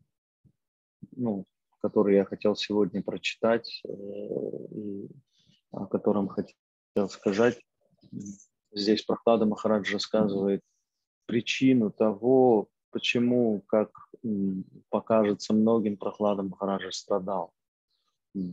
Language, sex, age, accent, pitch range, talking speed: Russian, male, 20-39, native, 100-110 Hz, 75 wpm